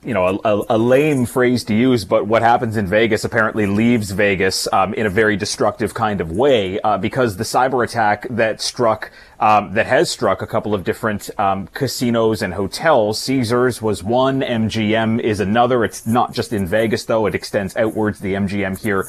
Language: English